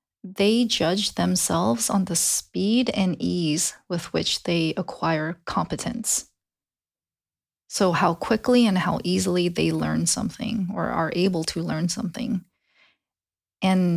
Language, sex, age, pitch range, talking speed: English, female, 20-39, 170-215 Hz, 125 wpm